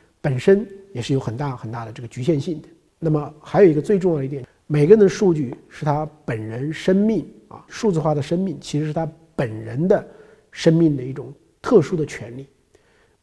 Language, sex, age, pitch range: Chinese, male, 50-69, 140-175 Hz